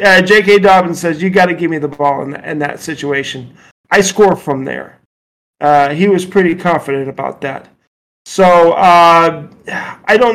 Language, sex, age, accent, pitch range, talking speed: English, male, 40-59, American, 155-200 Hz, 180 wpm